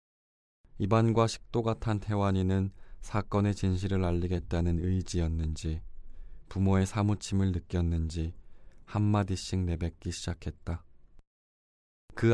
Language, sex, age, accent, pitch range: Korean, male, 20-39, native, 85-100 Hz